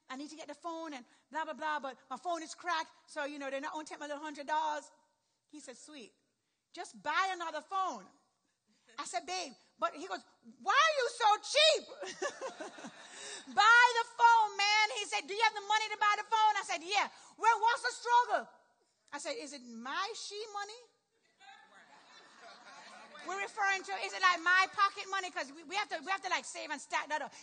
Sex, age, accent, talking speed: female, 40-59, American, 210 wpm